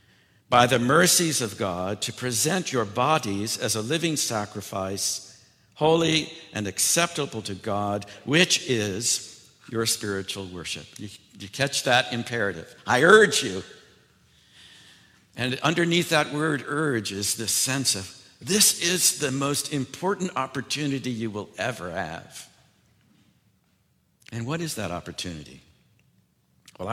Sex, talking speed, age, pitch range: male, 125 wpm, 60-79, 105-155 Hz